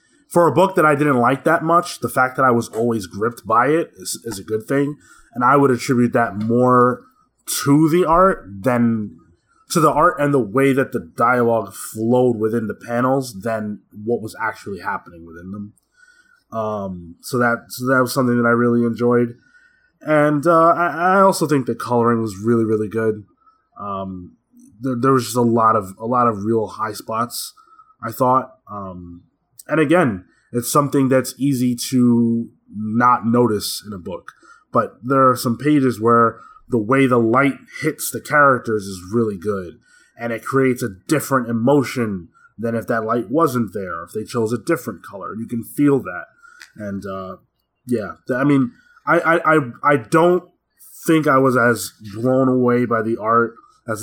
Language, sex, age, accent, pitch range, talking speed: English, male, 20-39, American, 115-145 Hz, 180 wpm